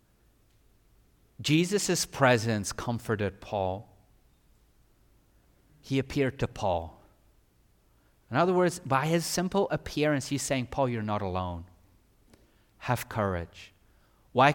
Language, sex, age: English, male, 30-49